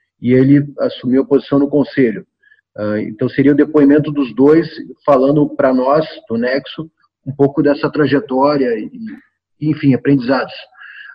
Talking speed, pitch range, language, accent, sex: 140 wpm, 135-165 Hz, Portuguese, Brazilian, male